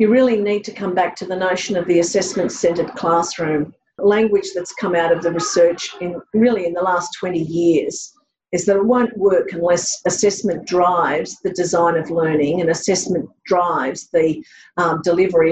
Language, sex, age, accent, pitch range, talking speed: English, female, 50-69, Australian, 175-230 Hz, 175 wpm